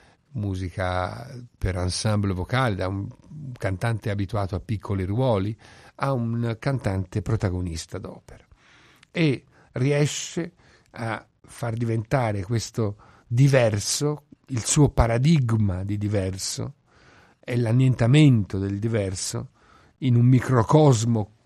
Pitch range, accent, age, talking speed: 100-125 Hz, native, 50-69, 100 wpm